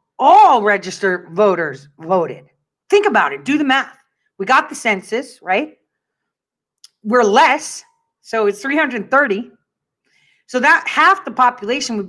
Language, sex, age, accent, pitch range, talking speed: English, female, 40-59, American, 195-270 Hz, 130 wpm